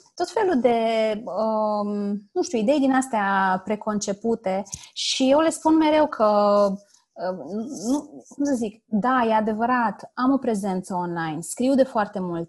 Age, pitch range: 20-39, 180-225 Hz